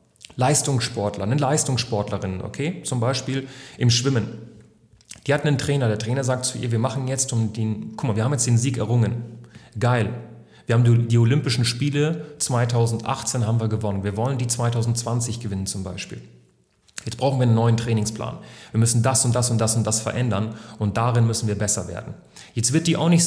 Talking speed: 190 wpm